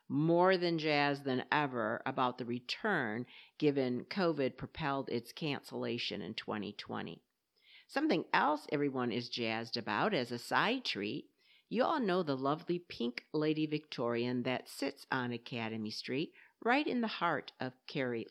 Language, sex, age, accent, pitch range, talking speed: English, female, 50-69, American, 125-175 Hz, 145 wpm